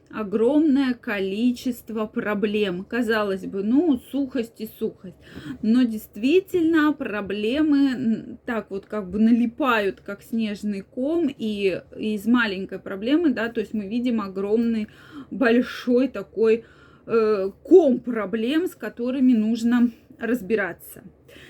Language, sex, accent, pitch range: Russian, female, native, 220-280 Hz